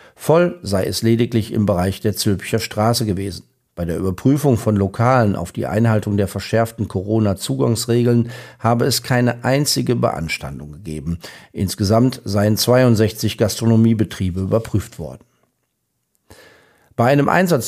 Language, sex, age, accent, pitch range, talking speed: German, male, 50-69, German, 100-120 Hz, 120 wpm